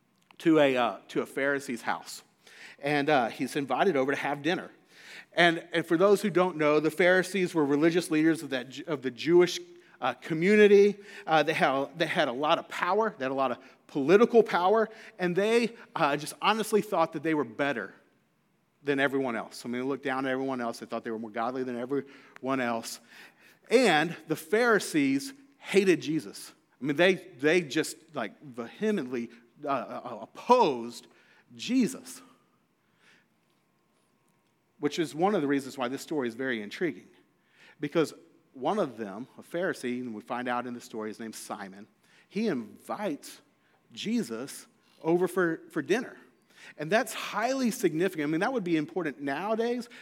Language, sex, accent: English, male, American